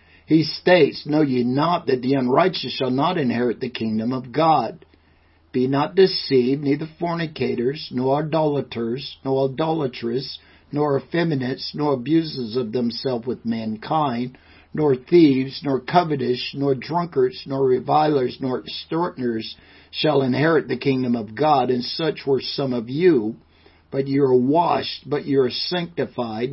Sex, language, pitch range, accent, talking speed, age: male, English, 115-150 Hz, American, 140 wpm, 50-69